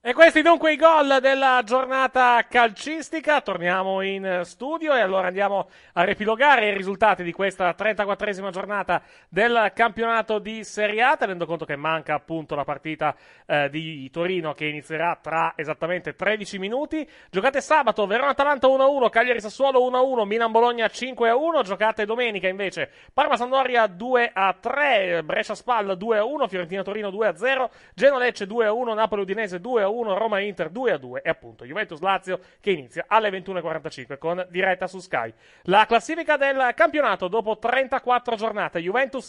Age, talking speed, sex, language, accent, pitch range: 30-49, 135 wpm, male, Italian, native, 185-250 Hz